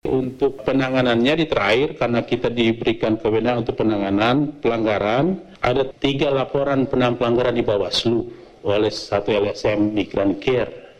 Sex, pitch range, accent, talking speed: male, 110-140 Hz, native, 125 wpm